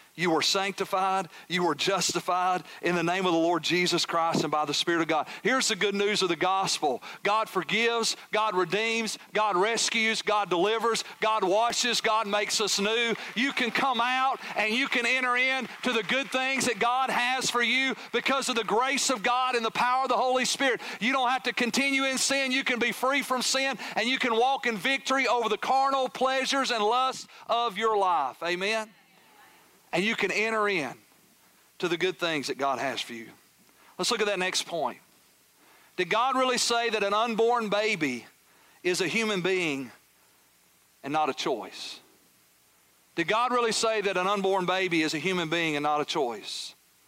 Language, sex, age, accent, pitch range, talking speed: English, male, 40-59, American, 185-240 Hz, 195 wpm